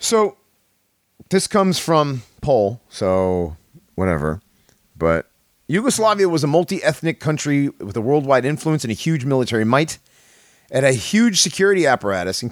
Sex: male